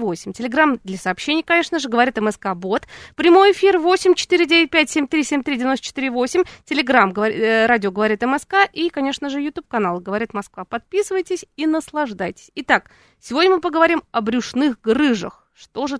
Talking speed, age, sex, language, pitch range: 135 wpm, 20-39, female, Russian, 210-300 Hz